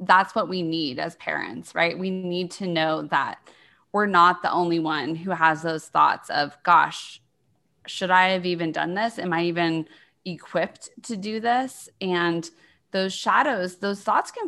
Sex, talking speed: female, 175 wpm